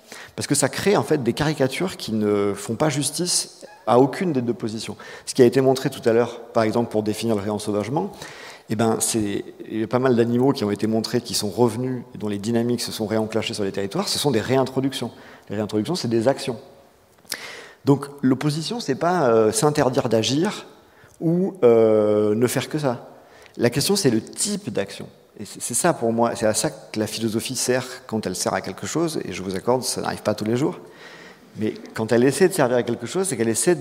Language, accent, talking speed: French, French, 220 wpm